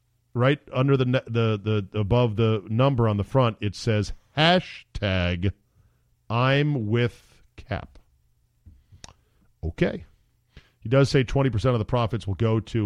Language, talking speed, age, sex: English, 140 wpm, 40-59, male